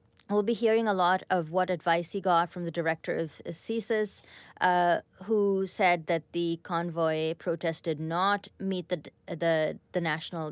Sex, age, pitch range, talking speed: female, 30-49, 165-200 Hz, 165 wpm